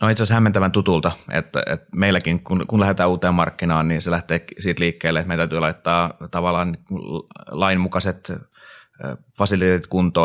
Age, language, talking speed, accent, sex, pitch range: 30-49, Finnish, 145 wpm, native, male, 80-90 Hz